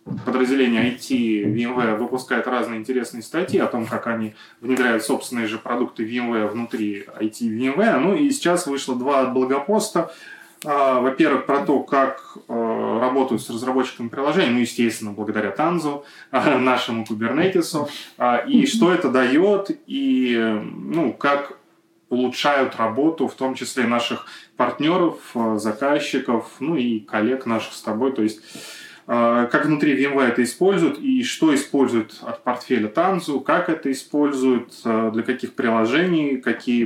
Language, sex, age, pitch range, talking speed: Russian, male, 20-39, 115-140 Hz, 125 wpm